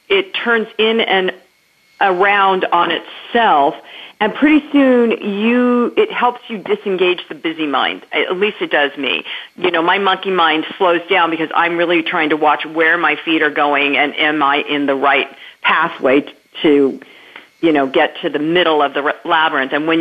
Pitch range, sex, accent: 165-220 Hz, female, American